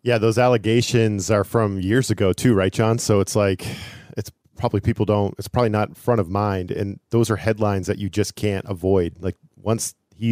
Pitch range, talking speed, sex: 100-125 Hz, 205 wpm, male